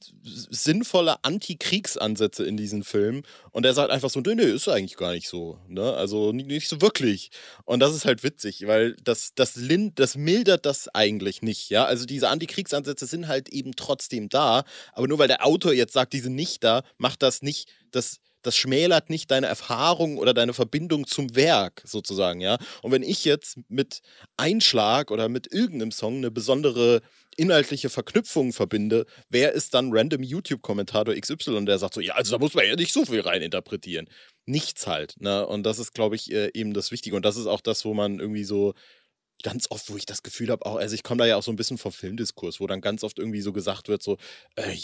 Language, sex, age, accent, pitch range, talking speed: German, male, 30-49, German, 105-145 Hz, 210 wpm